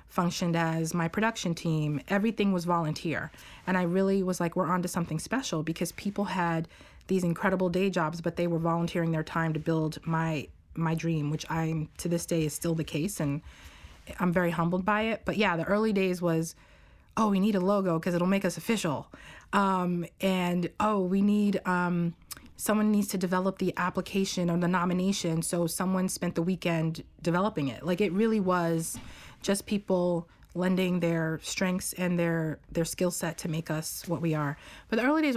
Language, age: English, 30-49